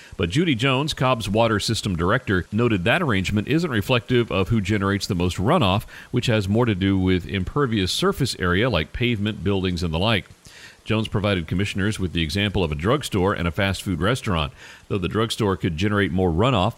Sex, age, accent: male, 40-59, American